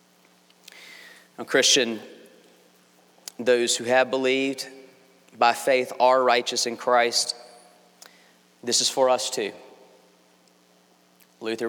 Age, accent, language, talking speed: 40-59, American, English, 85 wpm